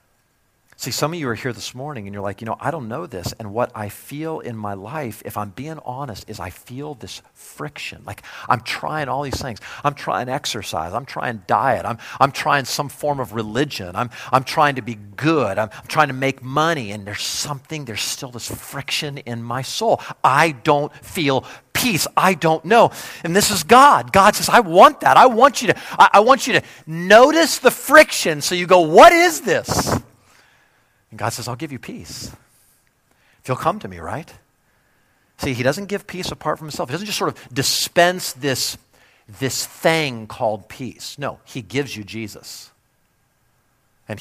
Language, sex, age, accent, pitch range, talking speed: English, male, 50-69, American, 110-155 Hz, 200 wpm